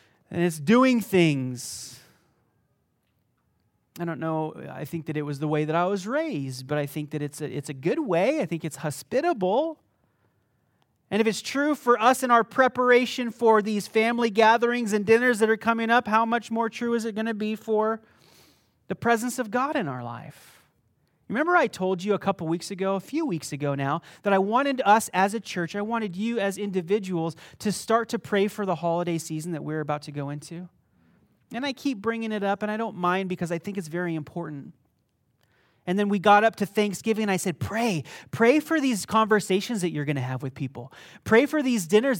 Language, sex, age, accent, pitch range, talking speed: English, male, 30-49, American, 160-230 Hz, 210 wpm